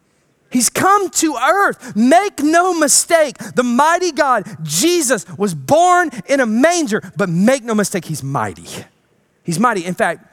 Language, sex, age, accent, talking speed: English, male, 30-49, American, 150 wpm